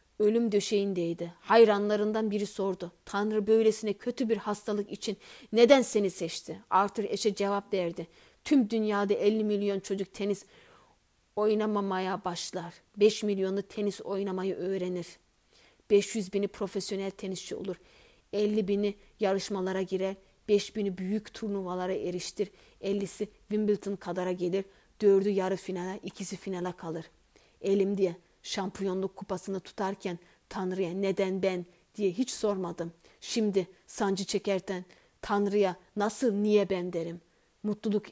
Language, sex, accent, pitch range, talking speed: Turkish, female, native, 185-210 Hz, 120 wpm